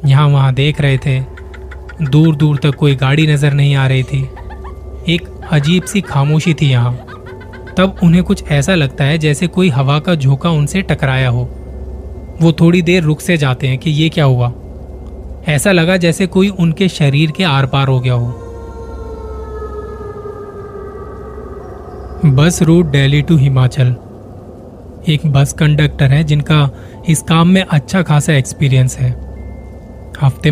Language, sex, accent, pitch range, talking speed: Hindi, male, native, 120-155 Hz, 150 wpm